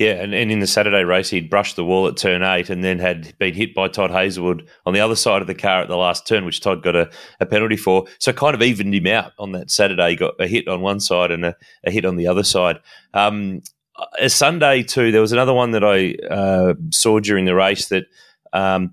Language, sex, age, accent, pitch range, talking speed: English, male, 30-49, Australian, 90-100 Hz, 260 wpm